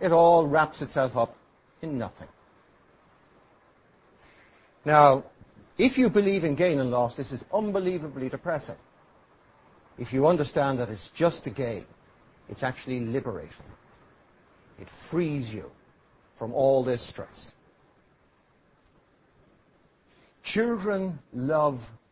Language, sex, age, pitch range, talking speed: English, male, 60-79, 130-180 Hz, 105 wpm